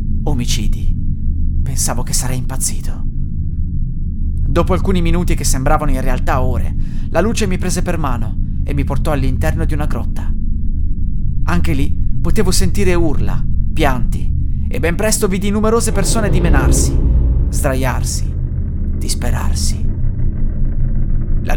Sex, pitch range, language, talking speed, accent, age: male, 80-120 Hz, Italian, 115 wpm, native, 30-49